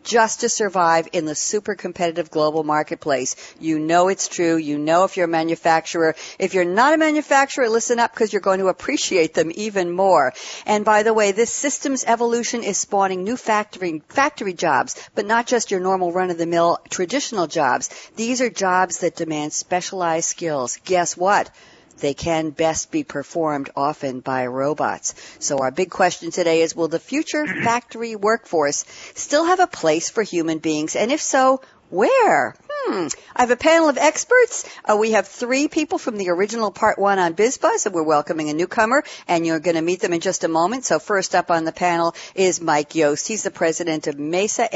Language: English